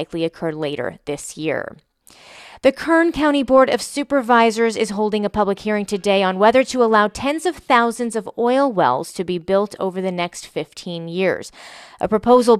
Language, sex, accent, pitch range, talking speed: English, female, American, 180-235 Hz, 180 wpm